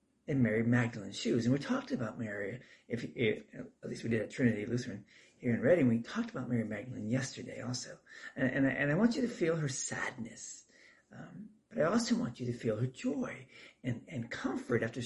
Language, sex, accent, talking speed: English, male, American, 210 wpm